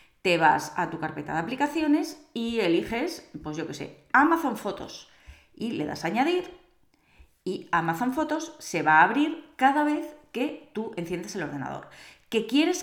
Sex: female